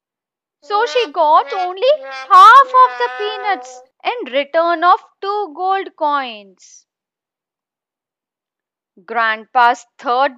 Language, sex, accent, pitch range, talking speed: English, female, Indian, 255-385 Hz, 95 wpm